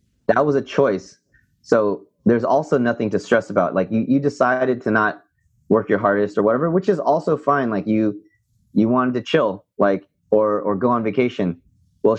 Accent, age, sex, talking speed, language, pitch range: American, 30-49, male, 190 wpm, English, 100-130 Hz